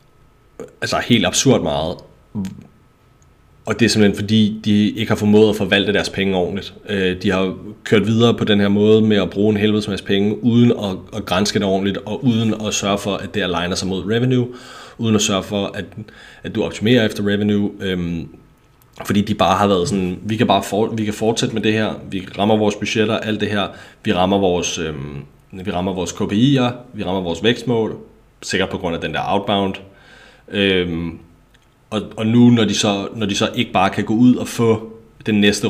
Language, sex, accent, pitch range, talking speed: Danish, male, native, 95-115 Hz, 205 wpm